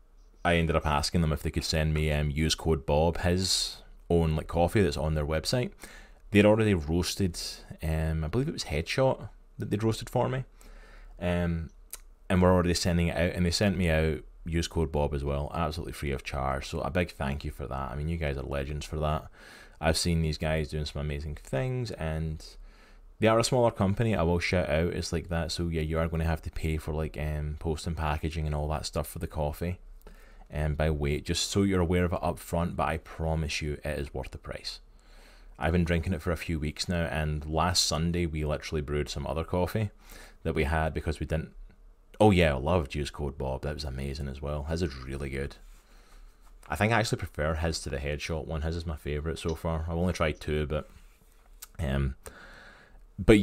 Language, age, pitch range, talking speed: English, 20-39, 75-85 Hz, 220 wpm